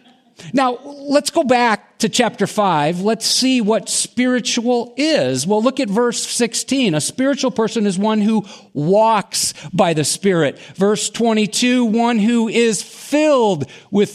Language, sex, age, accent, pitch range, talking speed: English, male, 50-69, American, 155-230 Hz, 145 wpm